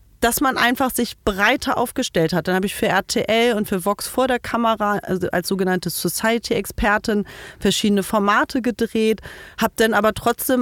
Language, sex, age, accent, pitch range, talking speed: German, female, 30-49, German, 190-245 Hz, 160 wpm